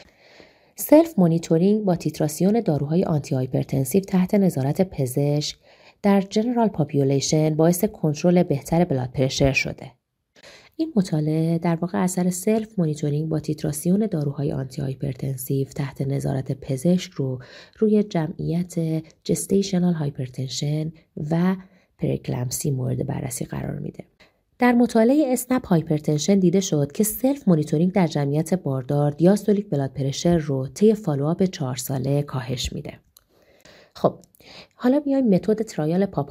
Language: Persian